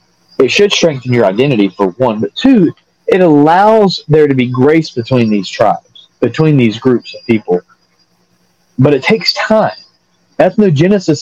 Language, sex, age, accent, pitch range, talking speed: English, male, 40-59, American, 115-180 Hz, 150 wpm